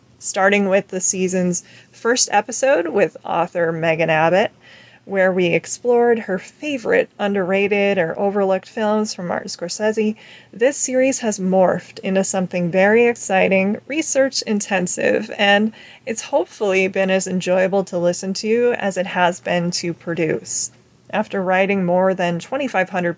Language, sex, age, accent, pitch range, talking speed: English, female, 20-39, American, 180-210 Hz, 130 wpm